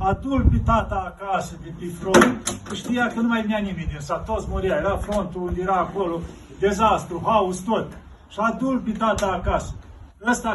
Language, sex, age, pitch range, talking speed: Romanian, male, 40-59, 175-225 Hz, 155 wpm